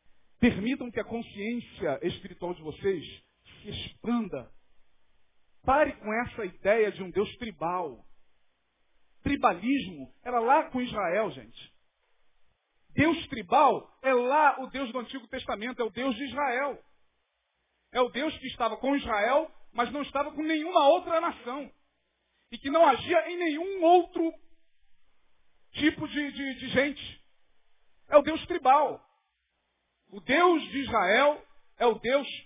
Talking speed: 135 wpm